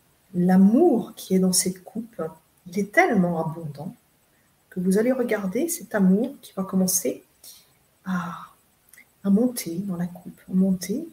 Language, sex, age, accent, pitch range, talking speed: French, female, 30-49, French, 180-210 Hz, 140 wpm